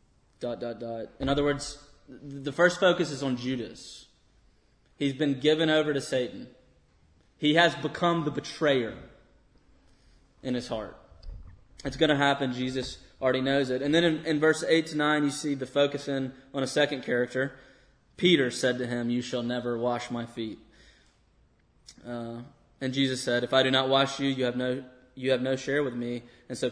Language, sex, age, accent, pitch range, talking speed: English, male, 20-39, American, 120-140 Hz, 185 wpm